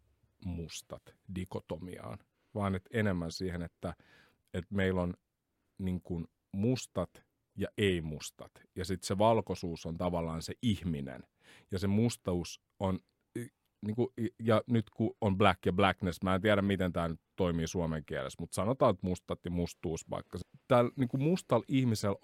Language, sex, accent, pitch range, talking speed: Finnish, male, native, 90-105 Hz, 145 wpm